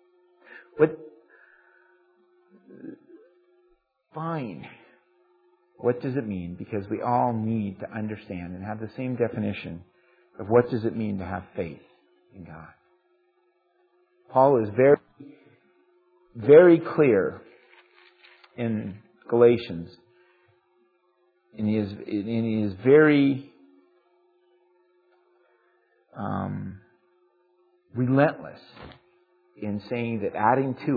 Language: English